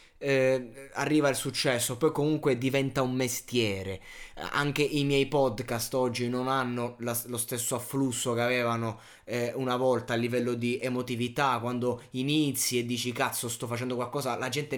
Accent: native